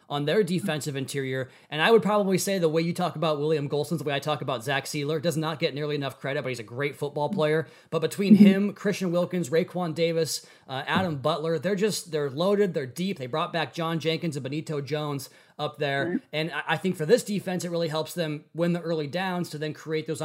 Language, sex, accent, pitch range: English, male, American, 145-175 Hz